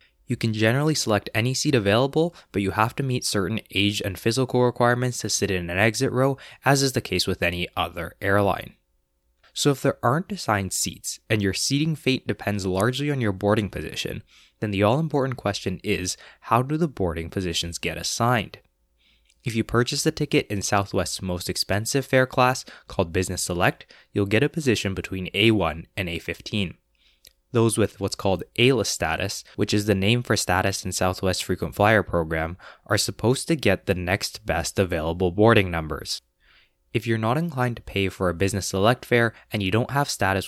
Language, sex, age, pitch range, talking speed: English, male, 20-39, 90-120 Hz, 185 wpm